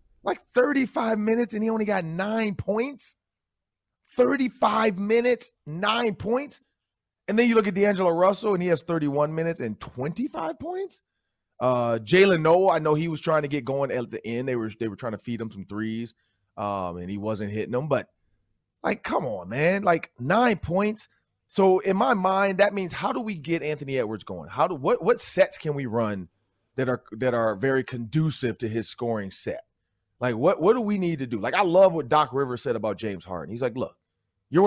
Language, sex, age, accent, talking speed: English, male, 30-49, American, 205 wpm